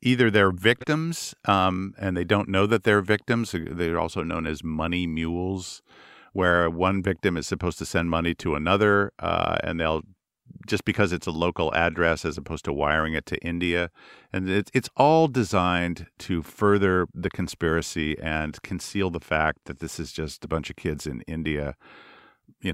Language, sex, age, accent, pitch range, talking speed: English, male, 50-69, American, 80-95 Hz, 175 wpm